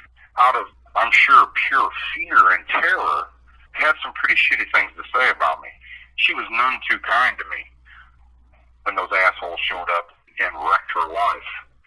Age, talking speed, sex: 60-79, 165 wpm, male